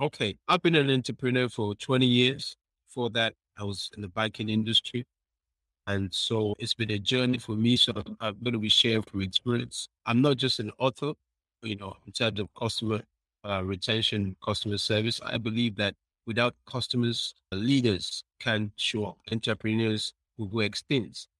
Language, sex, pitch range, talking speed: English, male, 105-125 Hz, 170 wpm